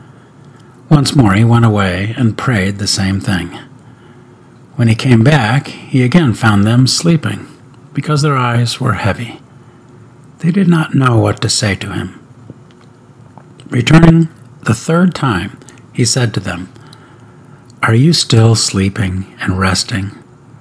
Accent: American